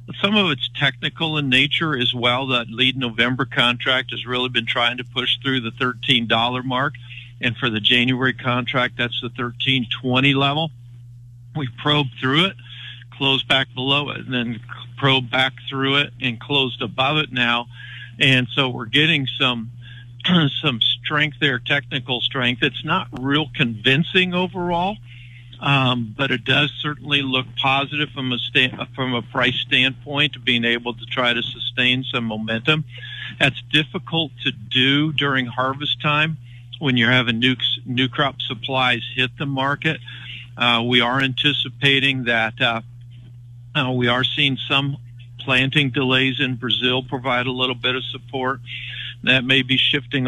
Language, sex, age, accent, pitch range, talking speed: English, male, 50-69, American, 120-140 Hz, 155 wpm